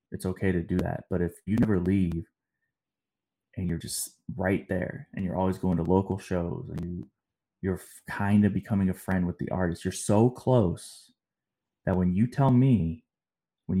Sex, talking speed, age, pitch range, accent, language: male, 180 wpm, 20-39, 90-110 Hz, American, English